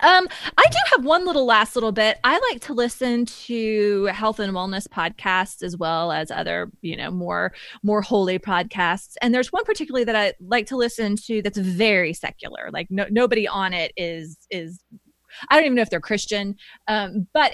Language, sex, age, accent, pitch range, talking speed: English, female, 20-39, American, 190-240 Hz, 190 wpm